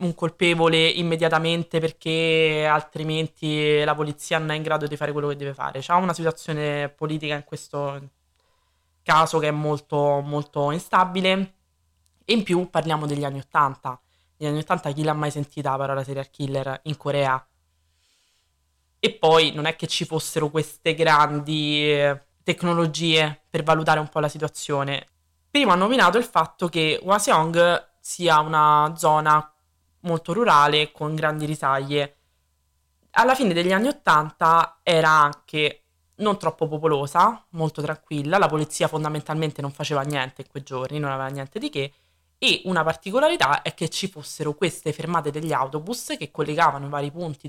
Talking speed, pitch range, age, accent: 155 wpm, 140-165 Hz, 20-39, native